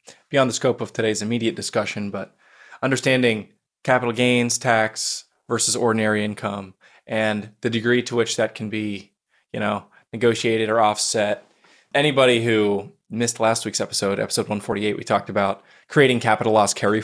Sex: male